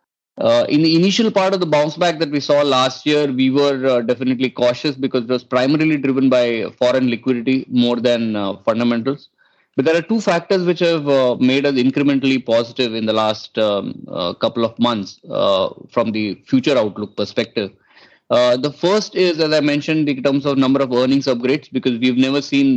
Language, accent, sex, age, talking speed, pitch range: English, Indian, male, 20-39, 200 wpm, 115-140 Hz